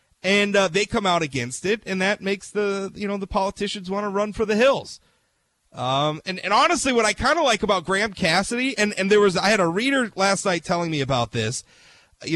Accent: American